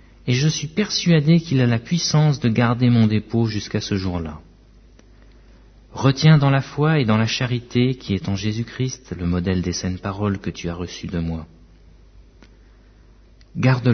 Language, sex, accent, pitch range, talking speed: French, male, French, 90-125 Hz, 170 wpm